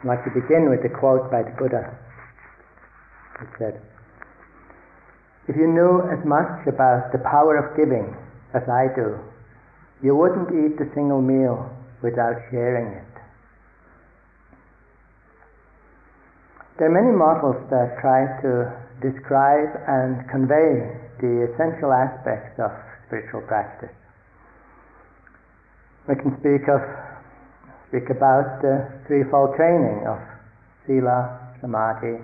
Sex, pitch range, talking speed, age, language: male, 120-140 Hz, 115 wpm, 50-69, English